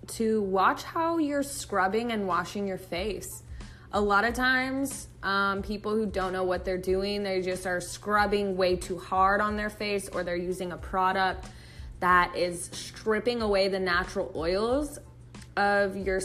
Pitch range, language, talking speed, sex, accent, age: 185-225 Hz, English, 165 wpm, female, American, 20-39